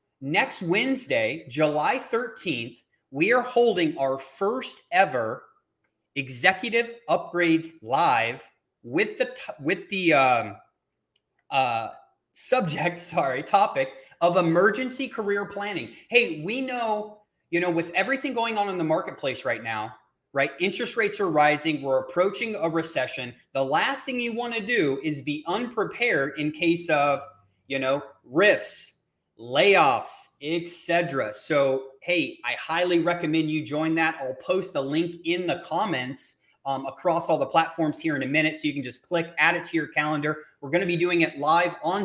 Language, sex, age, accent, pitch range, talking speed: English, male, 30-49, American, 145-210 Hz, 155 wpm